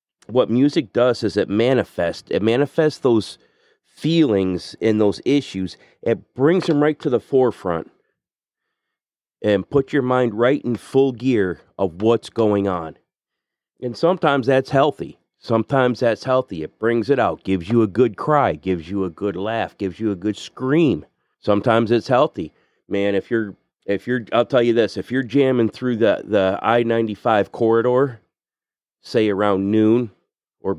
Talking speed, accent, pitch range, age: 160 wpm, American, 100-125 Hz, 40-59